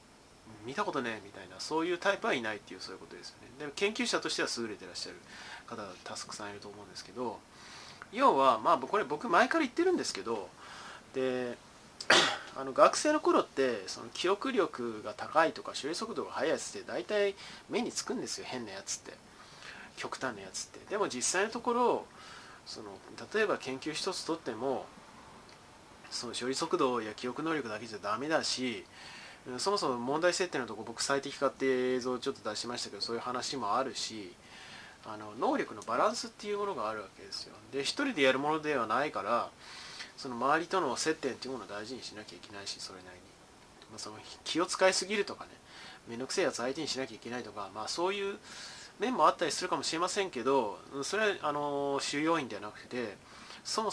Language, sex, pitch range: Japanese, male, 125-190 Hz